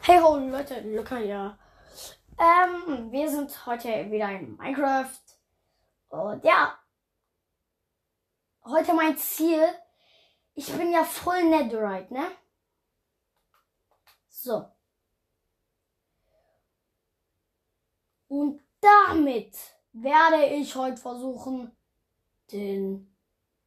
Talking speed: 80 wpm